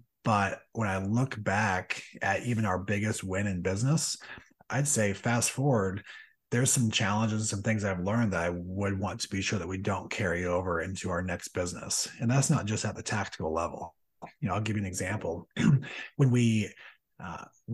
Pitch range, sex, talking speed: 95-115 Hz, male, 195 wpm